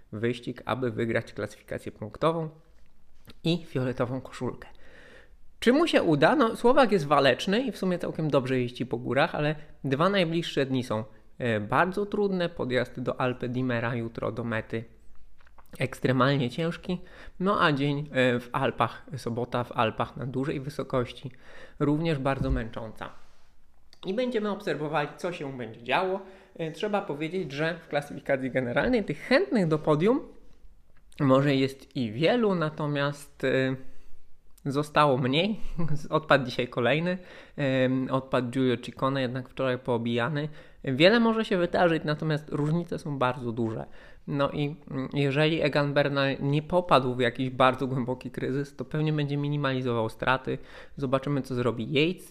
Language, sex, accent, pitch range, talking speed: Polish, male, native, 125-160 Hz, 135 wpm